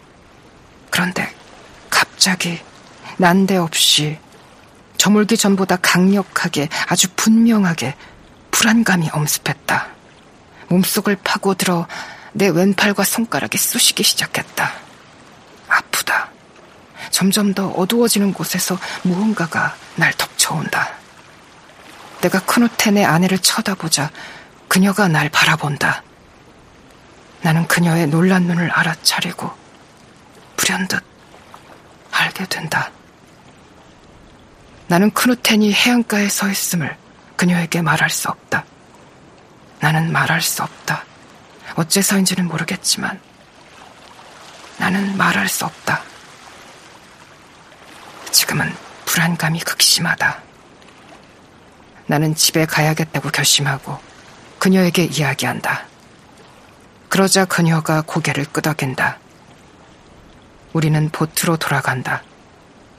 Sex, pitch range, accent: female, 160-200 Hz, native